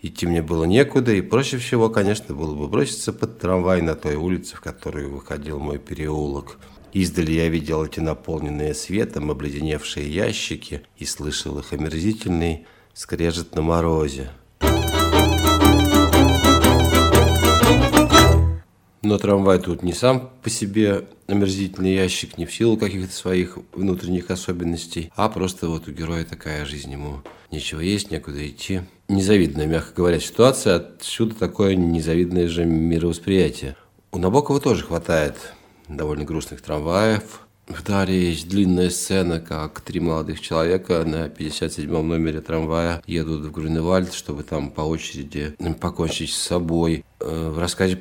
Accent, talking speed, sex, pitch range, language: native, 130 wpm, male, 80-95 Hz, Russian